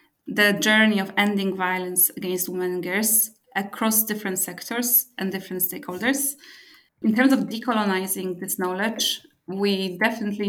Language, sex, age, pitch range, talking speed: English, female, 20-39, 190-220 Hz, 130 wpm